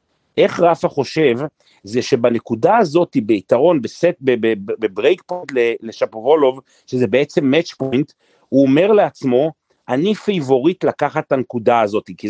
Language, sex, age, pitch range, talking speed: Hebrew, male, 40-59, 140-190 Hz, 130 wpm